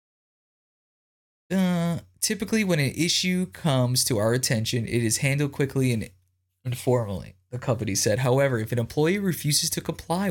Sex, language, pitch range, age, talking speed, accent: male, English, 105-140 Hz, 20-39, 145 wpm, American